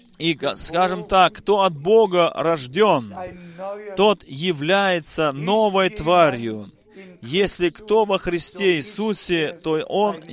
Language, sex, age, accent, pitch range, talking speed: Russian, male, 30-49, native, 170-205 Hz, 105 wpm